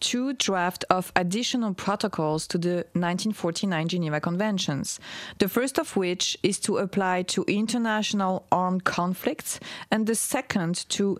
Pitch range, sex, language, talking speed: 170-215 Hz, female, English, 135 wpm